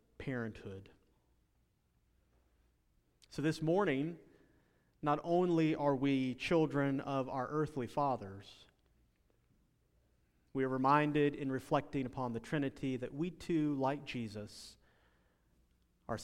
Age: 30-49